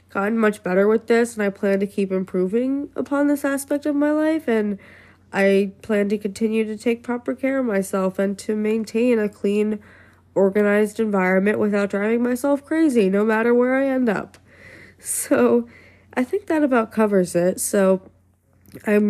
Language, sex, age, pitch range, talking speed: English, female, 20-39, 190-240 Hz, 170 wpm